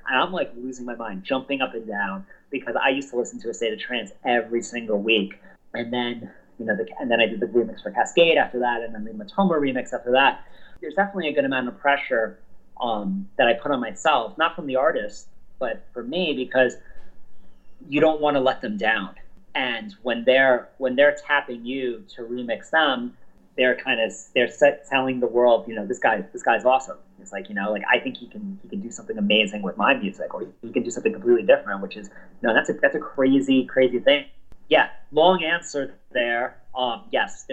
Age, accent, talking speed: 30-49, American, 220 wpm